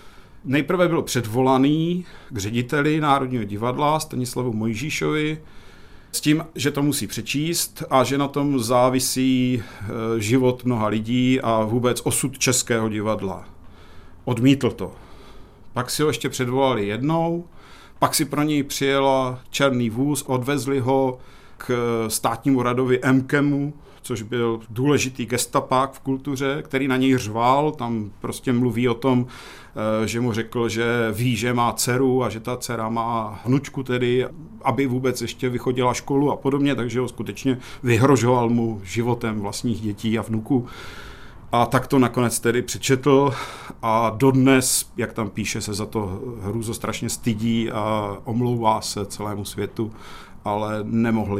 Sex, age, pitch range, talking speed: male, 50-69, 110-135 Hz, 140 wpm